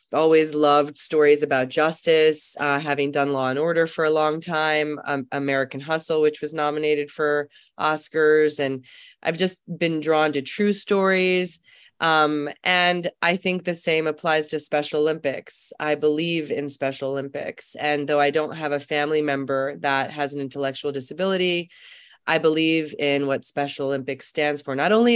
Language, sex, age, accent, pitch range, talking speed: English, female, 20-39, American, 140-165 Hz, 165 wpm